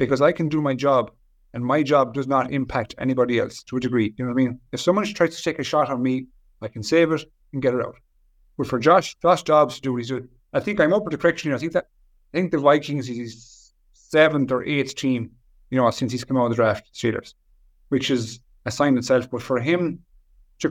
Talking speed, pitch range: 260 wpm, 125-150 Hz